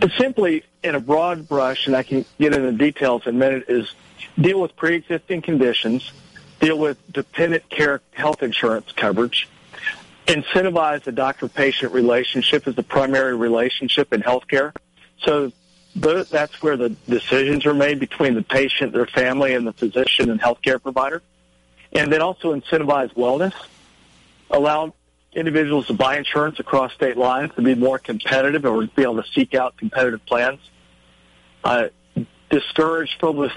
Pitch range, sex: 120-150 Hz, male